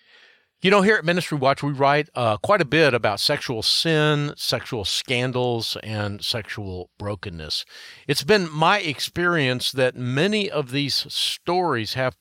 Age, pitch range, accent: 50-69, 110-145 Hz, American